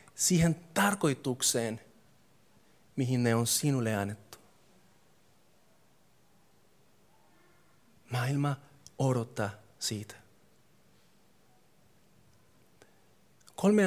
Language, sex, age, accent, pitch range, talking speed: Finnish, male, 30-49, native, 115-135 Hz, 50 wpm